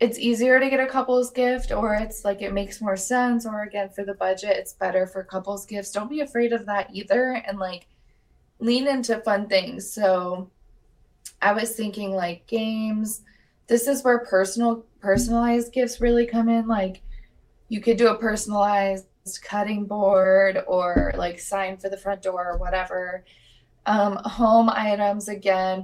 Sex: female